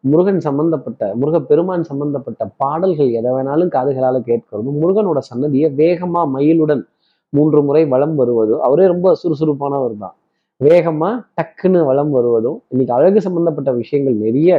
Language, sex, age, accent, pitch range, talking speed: Tamil, male, 20-39, native, 125-170 Hz, 130 wpm